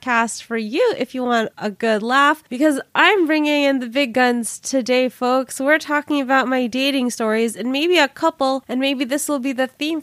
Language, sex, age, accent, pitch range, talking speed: English, female, 20-39, American, 215-275 Hz, 205 wpm